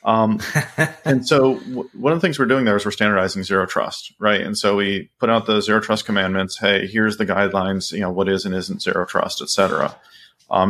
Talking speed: 225 wpm